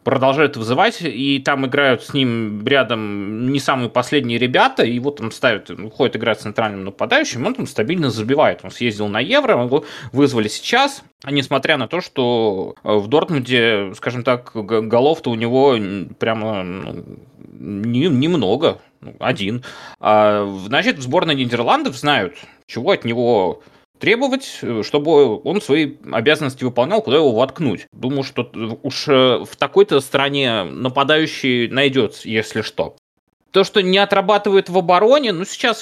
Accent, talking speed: native, 135 wpm